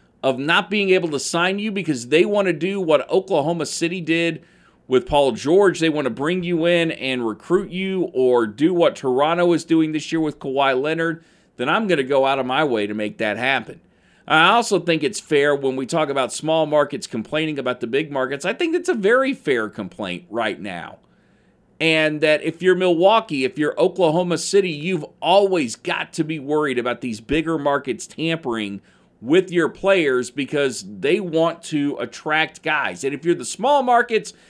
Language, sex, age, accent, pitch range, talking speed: English, male, 40-59, American, 140-185 Hz, 195 wpm